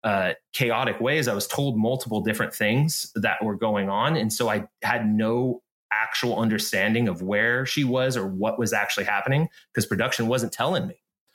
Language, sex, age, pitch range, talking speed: English, male, 30-49, 110-140 Hz, 180 wpm